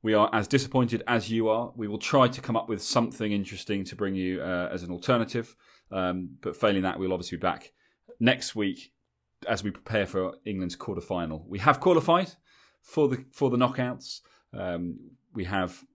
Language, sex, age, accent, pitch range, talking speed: English, male, 30-49, British, 90-115 Hz, 190 wpm